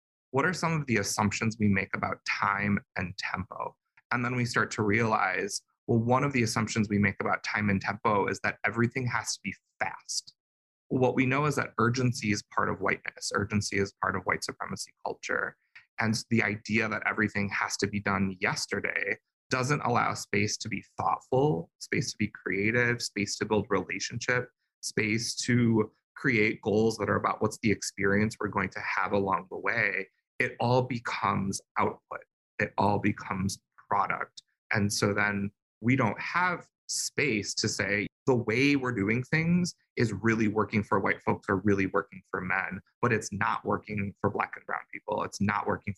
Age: 20-39